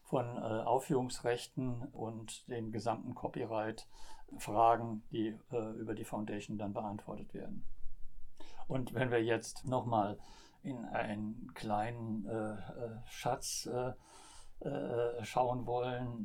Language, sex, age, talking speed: German, male, 60-79, 115 wpm